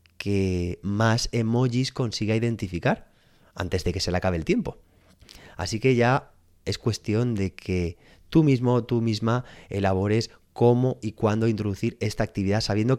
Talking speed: 150 wpm